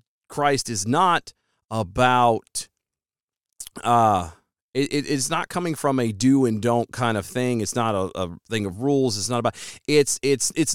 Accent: American